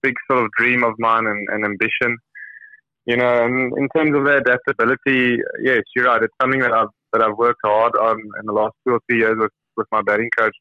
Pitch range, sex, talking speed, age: 115-135 Hz, male, 225 wpm, 20-39